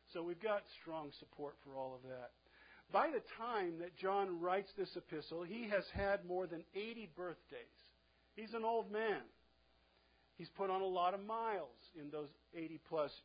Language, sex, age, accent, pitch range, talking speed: English, male, 50-69, American, 150-190 Hz, 175 wpm